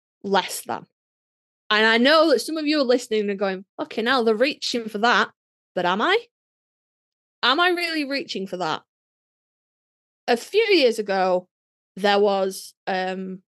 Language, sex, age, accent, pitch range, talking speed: English, female, 20-39, British, 190-255 Hz, 155 wpm